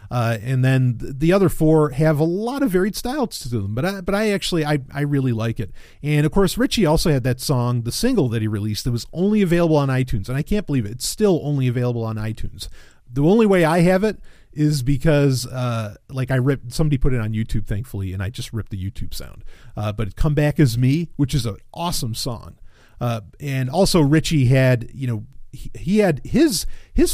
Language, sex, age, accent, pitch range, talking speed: English, male, 40-59, American, 120-160 Hz, 225 wpm